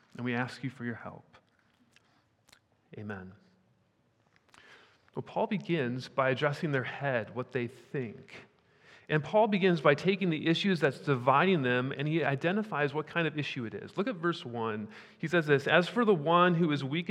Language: English